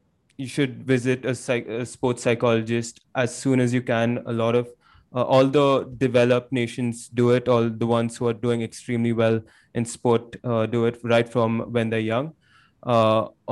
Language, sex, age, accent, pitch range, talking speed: English, male, 20-39, Indian, 115-135 Hz, 185 wpm